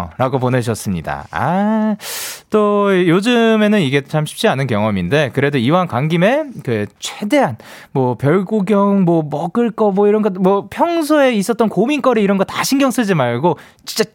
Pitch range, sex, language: 125-205 Hz, male, Korean